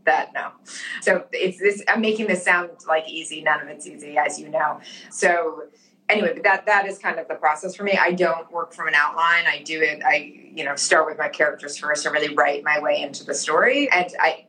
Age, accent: 30-49, American